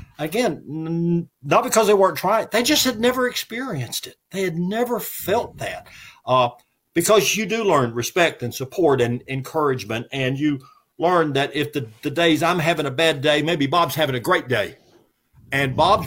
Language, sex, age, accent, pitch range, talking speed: English, male, 50-69, American, 120-170 Hz, 180 wpm